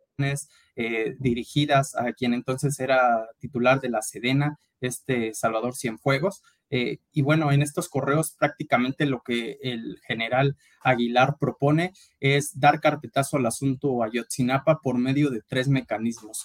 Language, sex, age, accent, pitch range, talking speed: Spanish, male, 20-39, Mexican, 125-150 Hz, 135 wpm